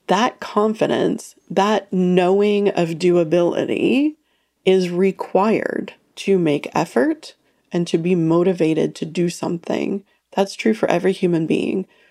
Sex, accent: female, American